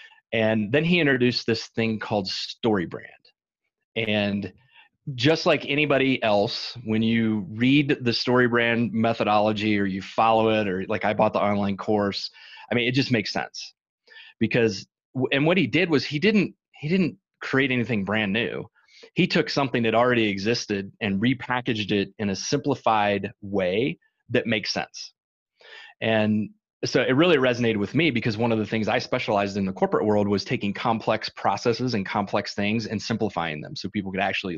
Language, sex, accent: English, male, American